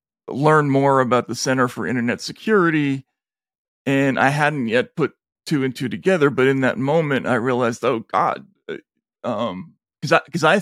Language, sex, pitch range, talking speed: English, male, 125-155 Hz, 170 wpm